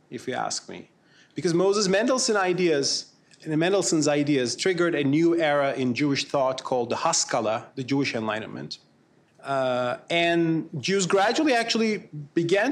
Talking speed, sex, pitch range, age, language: 125 wpm, male, 135-175 Hz, 30-49, English